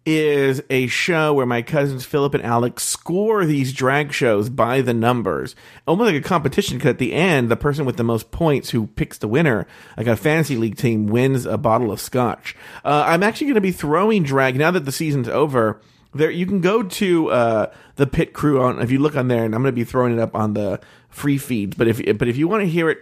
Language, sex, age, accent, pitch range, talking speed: English, male, 40-59, American, 120-160 Hz, 240 wpm